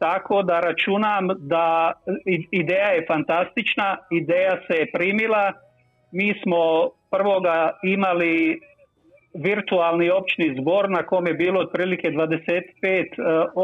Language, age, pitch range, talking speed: Croatian, 50-69, 170-200 Hz, 105 wpm